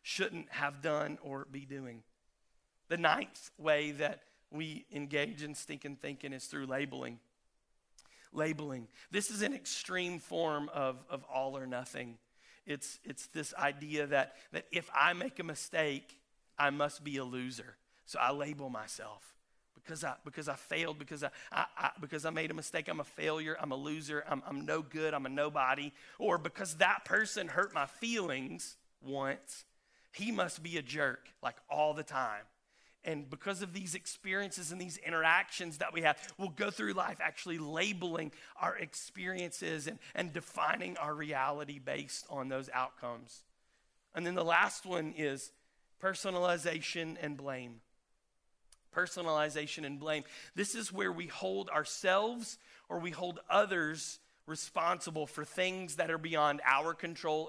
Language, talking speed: English, 160 wpm